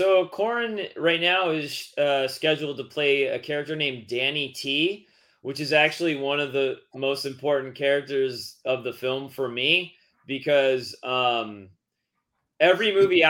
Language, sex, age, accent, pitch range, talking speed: English, male, 30-49, American, 125-155 Hz, 145 wpm